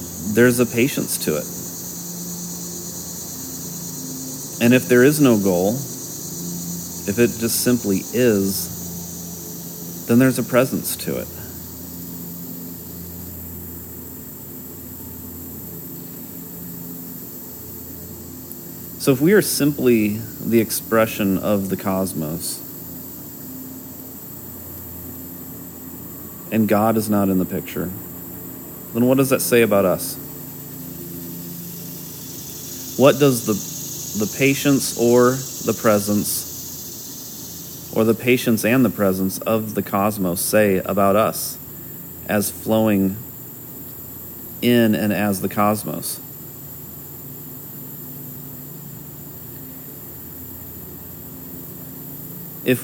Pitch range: 85-125 Hz